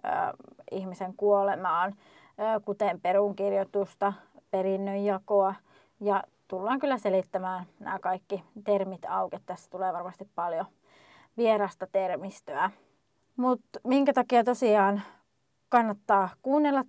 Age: 20-39